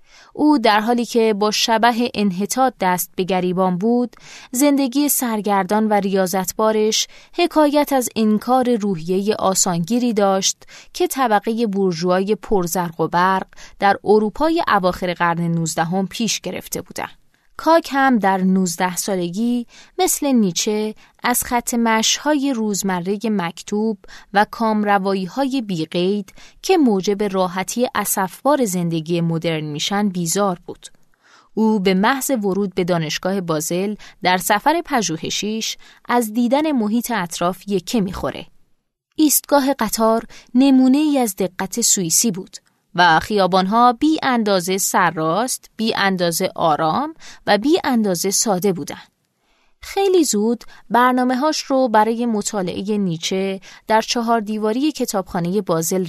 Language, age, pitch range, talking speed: Persian, 20-39, 190-245 Hz, 120 wpm